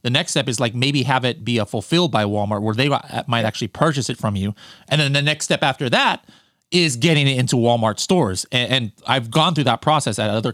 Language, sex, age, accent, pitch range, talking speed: English, male, 30-49, American, 115-150 Hz, 245 wpm